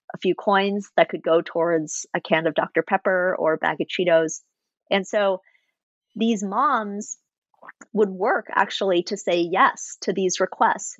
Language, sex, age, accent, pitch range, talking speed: English, female, 30-49, American, 180-230 Hz, 165 wpm